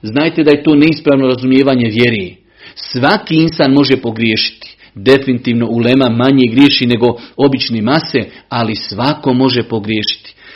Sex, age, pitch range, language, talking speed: male, 40-59, 130-165 Hz, Croatian, 125 wpm